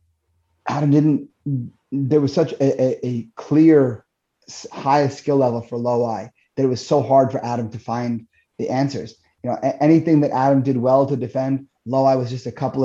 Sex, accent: male, American